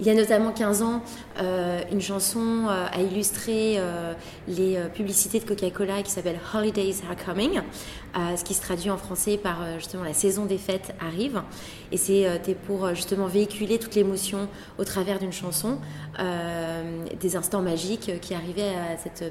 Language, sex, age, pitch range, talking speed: French, female, 20-39, 175-205 Hz, 155 wpm